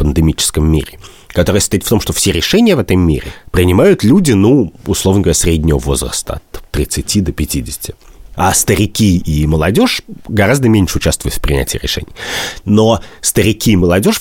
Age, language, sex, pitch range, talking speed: 30-49, Russian, male, 80-105 Hz, 155 wpm